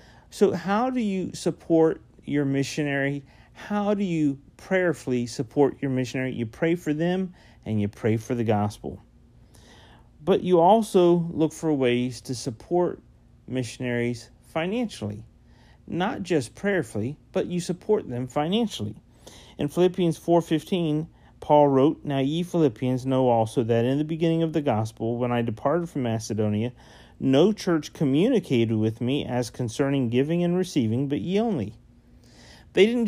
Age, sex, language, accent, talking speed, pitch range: 40-59, male, English, American, 145 wpm, 115-170 Hz